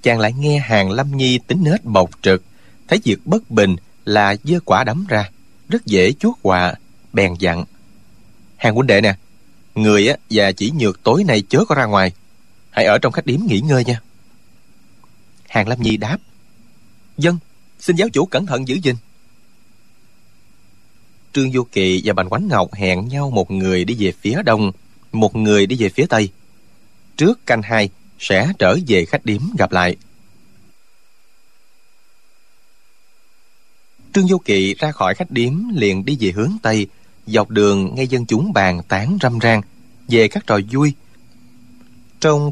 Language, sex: Vietnamese, male